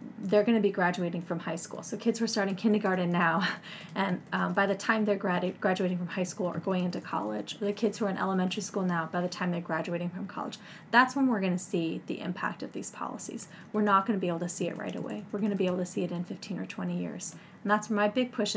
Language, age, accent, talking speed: English, 30-49, American, 280 wpm